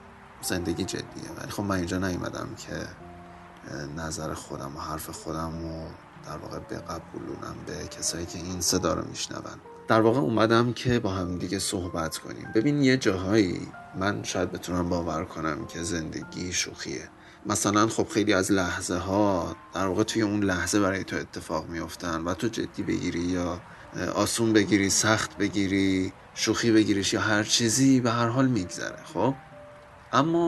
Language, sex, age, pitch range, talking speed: Persian, male, 30-49, 85-110 Hz, 155 wpm